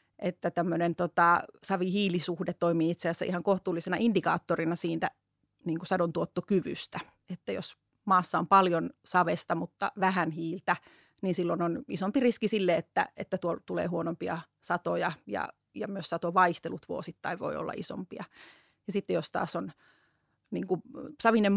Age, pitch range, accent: 30-49, 170-195 Hz, native